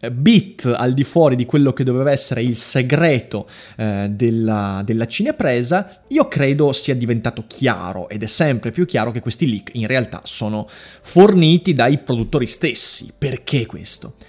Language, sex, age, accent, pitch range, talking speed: Italian, male, 30-49, native, 120-170 Hz, 155 wpm